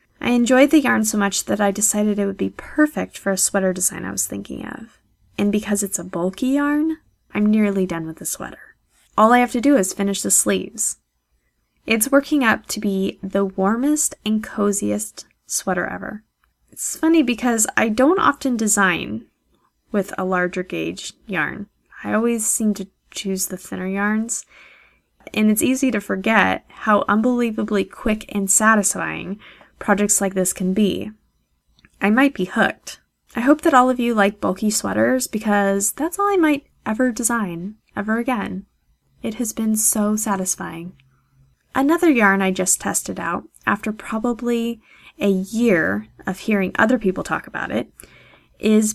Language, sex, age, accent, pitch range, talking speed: English, female, 10-29, American, 190-245 Hz, 165 wpm